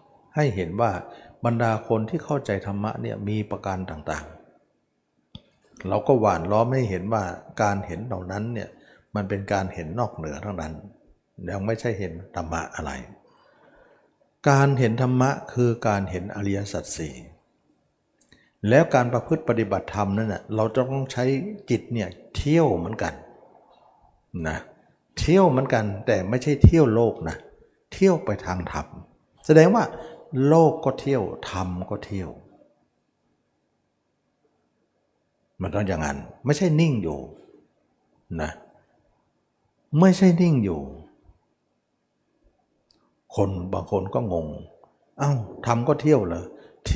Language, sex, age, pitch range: Thai, male, 60-79, 95-130 Hz